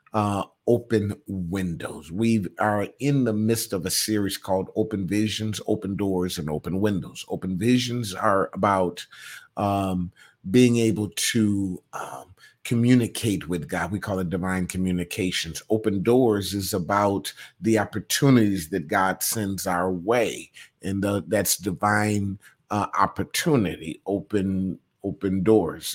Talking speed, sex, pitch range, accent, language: 125 wpm, male, 95-115 Hz, American, English